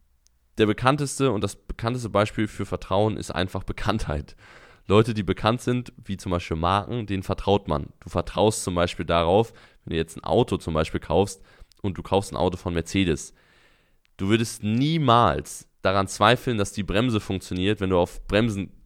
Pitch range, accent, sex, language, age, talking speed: 90-115 Hz, German, male, German, 20-39, 175 wpm